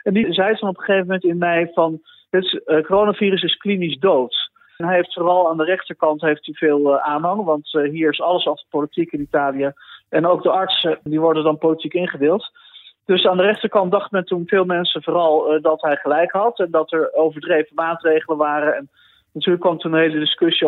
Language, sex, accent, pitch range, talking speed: Dutch, male, Dutch, 150-180 Hz, 210 wpm